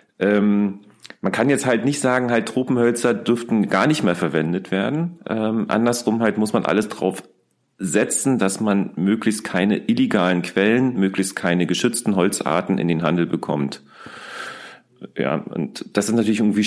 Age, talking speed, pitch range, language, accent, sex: 40-59, 150 wpm, 90-110 Hz, German, German, male